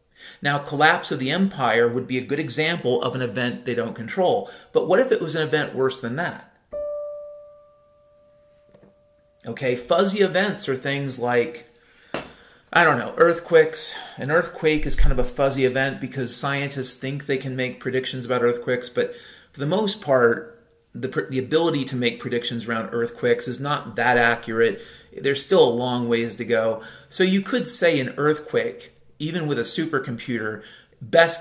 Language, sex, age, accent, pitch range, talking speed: English, male, 40-59, American, 125-170 Hz, 170 wpm